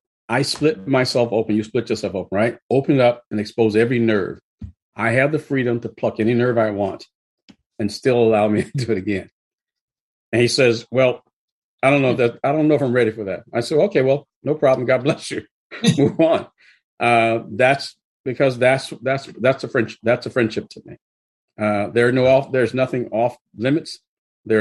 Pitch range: 110-135 Hz